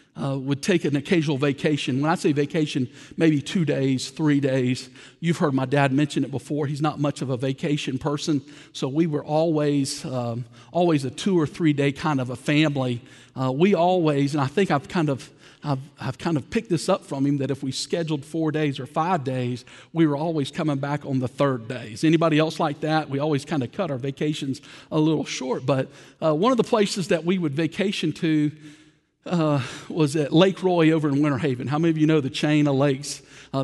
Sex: male